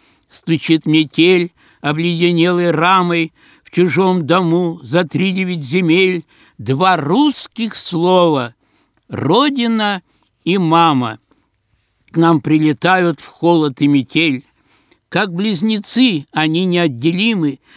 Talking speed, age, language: 90 wpm, 60-79, Russian